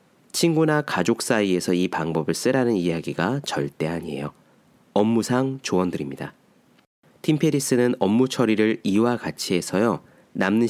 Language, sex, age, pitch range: Korean, male, 30-49, 95-145 Hz